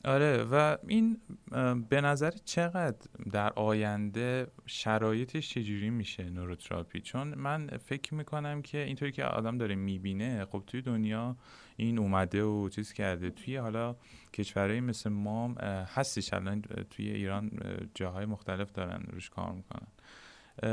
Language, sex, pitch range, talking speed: Persian, male, 105-145 Hz, 130 wpm